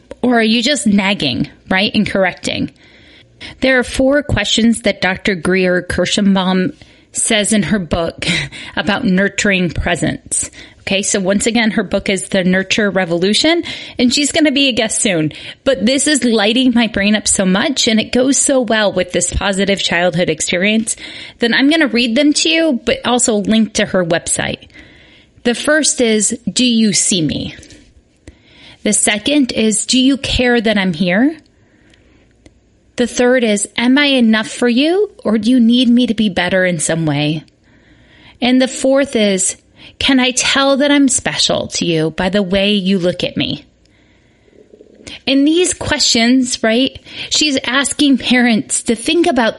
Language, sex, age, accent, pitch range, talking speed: English, female, 30-49, American, 200-260 Hz, 165 wpm